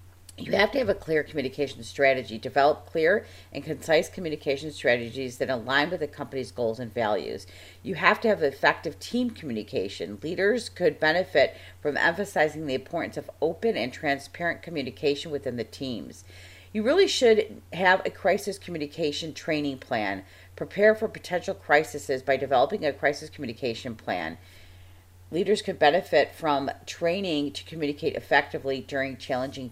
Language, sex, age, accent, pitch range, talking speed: English, female, 40-59, American, 115-170 Hz, 145 wpm